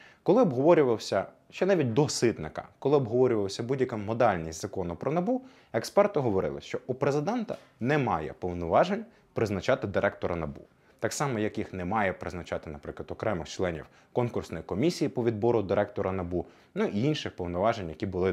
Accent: native